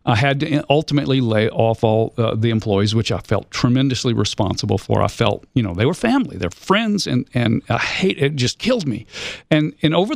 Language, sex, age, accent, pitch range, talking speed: English, male, 50-69, American, 110-135 Hz, 215 wpm